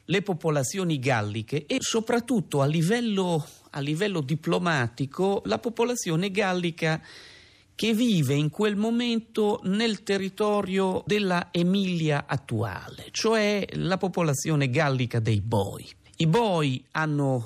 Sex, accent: male, native